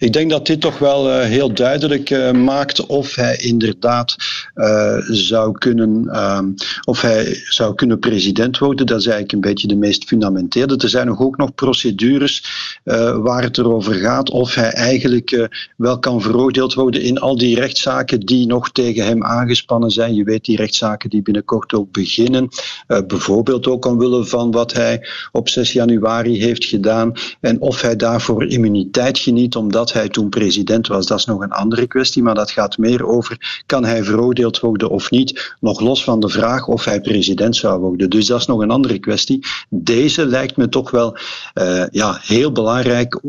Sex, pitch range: male, 110-130 Hz